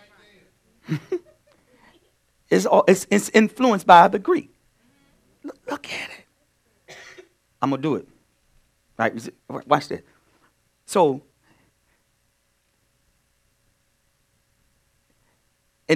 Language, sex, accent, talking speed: English, male, American, 85 wpm